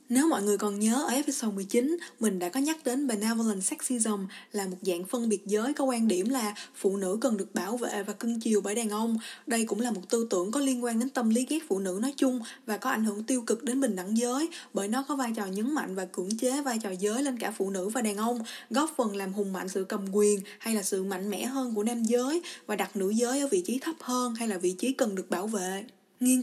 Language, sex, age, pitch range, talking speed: Vietnamese, female, 20-39, 200-255 Hz, 270 wpm